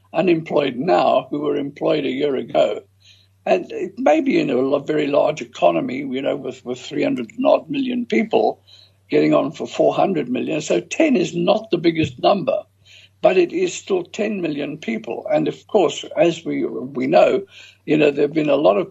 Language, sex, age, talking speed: English, male, 60-79, 185 wpm